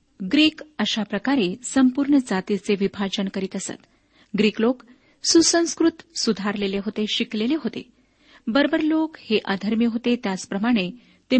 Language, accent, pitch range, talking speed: Marathi, native, 205-275 Hz, 115 wpm